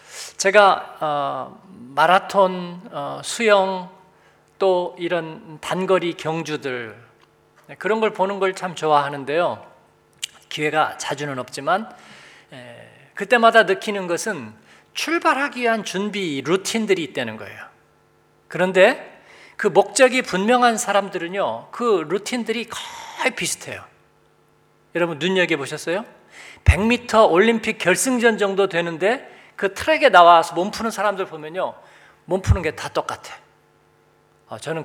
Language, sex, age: Korean, male, 40-59